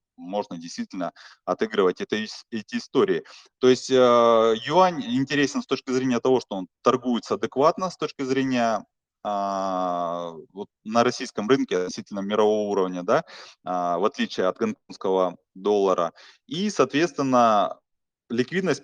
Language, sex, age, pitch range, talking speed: Russian, male, 20-39, 95-140 Hz, 130 wpm